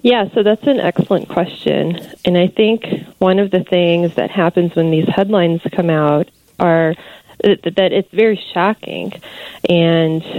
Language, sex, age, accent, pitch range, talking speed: English, female, 20-39, American, 160-185 Hz, 150 wpm